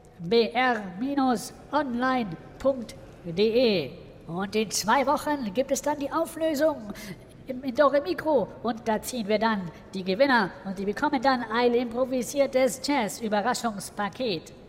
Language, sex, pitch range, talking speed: German, female, 210-285 Hz, 115 wpm